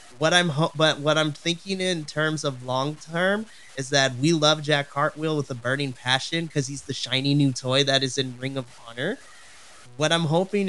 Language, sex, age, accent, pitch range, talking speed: English, male, 30-49, American, 140-180 Hz, 210 wpm